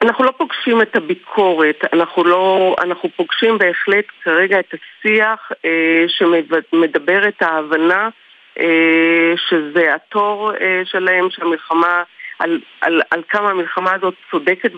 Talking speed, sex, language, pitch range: 125 wpm, female, Hebrew, 170-205 Hz